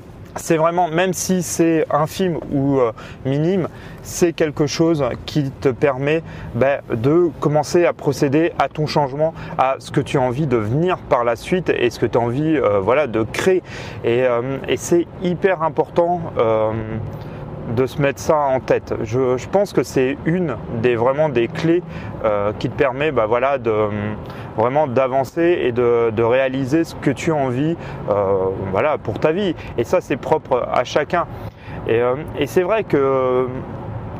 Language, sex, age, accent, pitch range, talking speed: French, male, 30-49, French, 120-165 Hz, 185 wpm